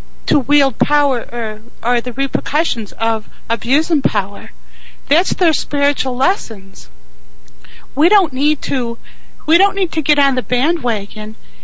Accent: American